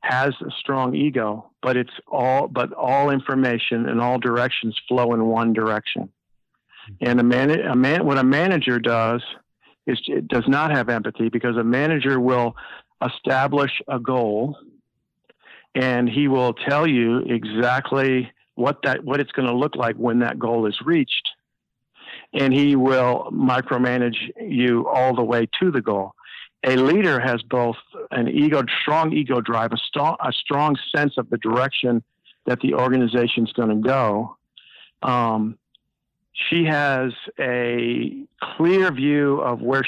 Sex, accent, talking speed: male, American, 150 wpm